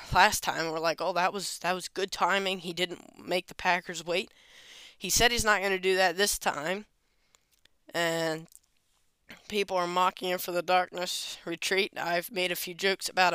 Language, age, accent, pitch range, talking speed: English, 10-29, American, 175-215 Hz, 190 wpm